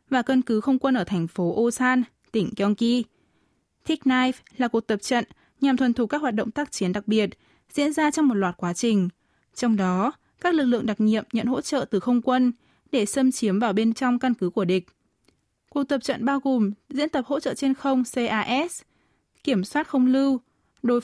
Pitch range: 205-265 Hz